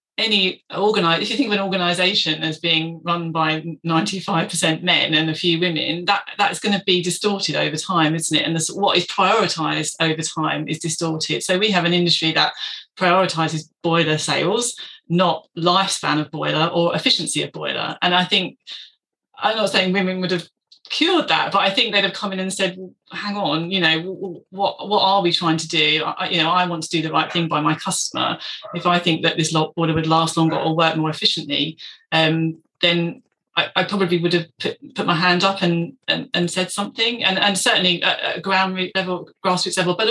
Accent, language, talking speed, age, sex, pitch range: British, English, 210 wpm, 30-49, female, 160-195 Hz